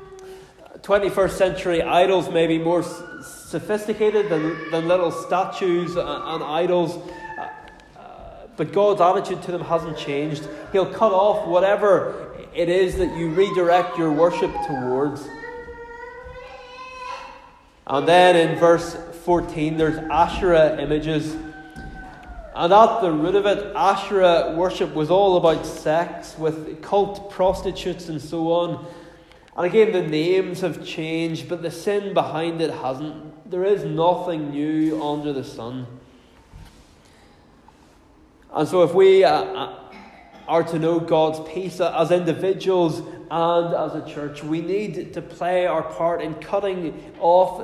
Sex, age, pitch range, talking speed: male, 20-39, 155-185 Hz, 130 wpm